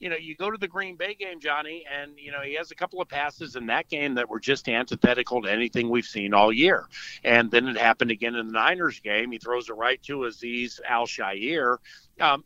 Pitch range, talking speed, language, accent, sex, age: 125-155 Hz, 235 wpm, English, American, male, 50-69